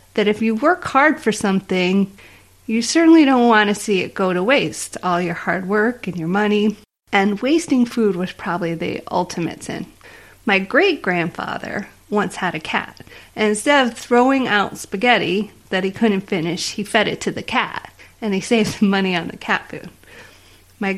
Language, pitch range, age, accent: English, 190-240 Hz, 30-49, American